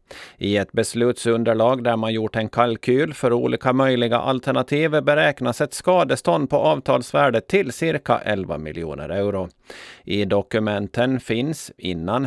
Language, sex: Swedish, male